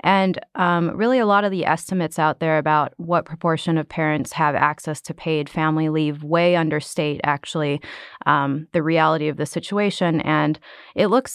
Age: 20-39